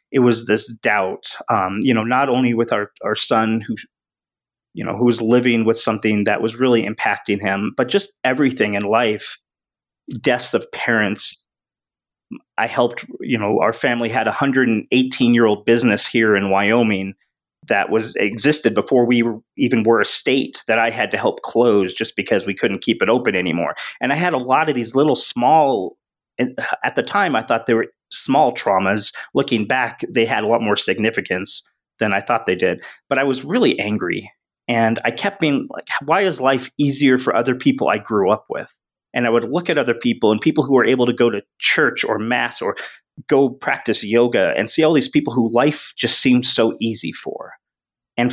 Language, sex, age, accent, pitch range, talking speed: English, male, 30-49, American, 110-135 Hz, 195 wpm